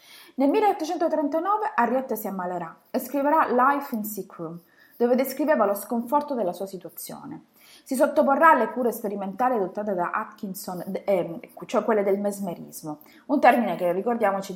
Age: 20-39